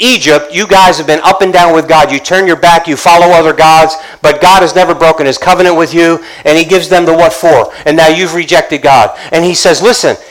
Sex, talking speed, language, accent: male, 250 wpm, English, American